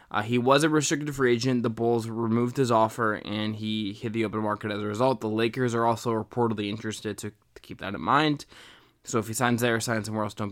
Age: 20-39